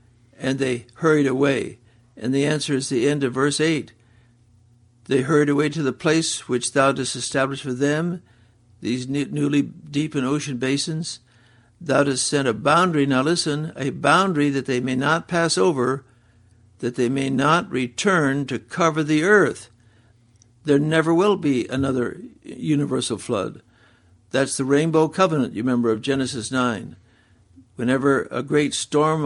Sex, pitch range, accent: male, 115-145 Hz, American